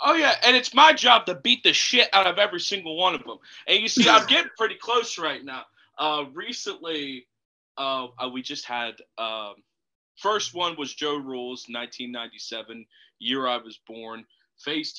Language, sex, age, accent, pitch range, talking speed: English, male, 20-39, American, 125-185 Hz, 170 wpm